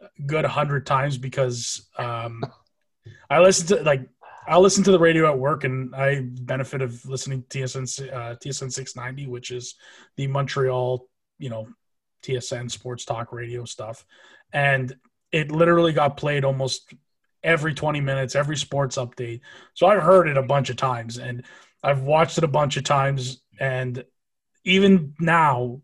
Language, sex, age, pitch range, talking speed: English, male, 20-39, 130-155 Hz, 180 wpm